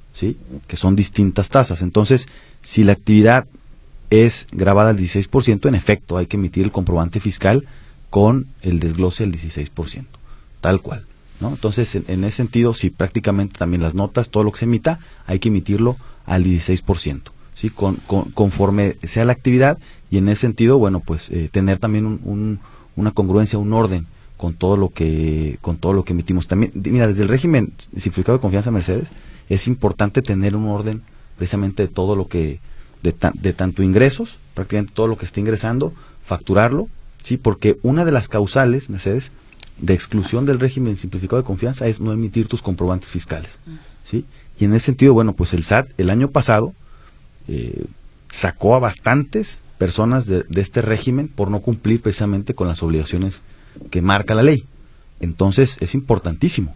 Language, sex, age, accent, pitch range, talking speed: Spanish, male, 30-49, Mexican, 95-115 Hz, 175 wpm